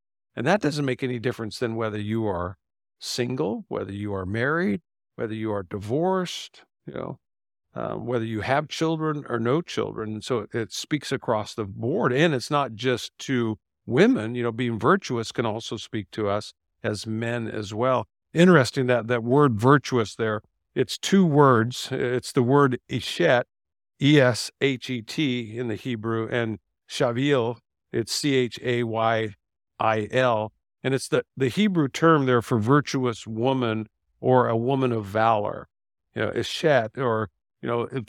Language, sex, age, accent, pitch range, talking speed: English, male, 50-69, American, 110-130 Hz, 170 wpm